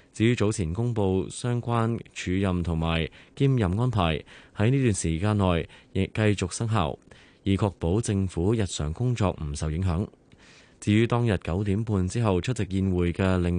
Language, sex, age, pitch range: Chinese, male, 20-39, 85-120 Hz